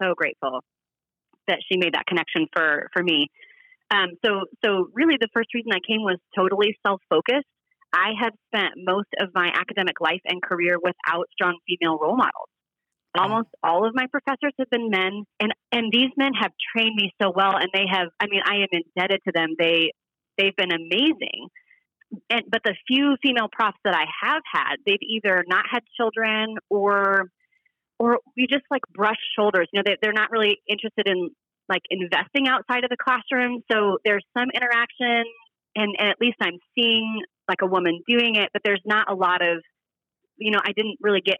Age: 30-49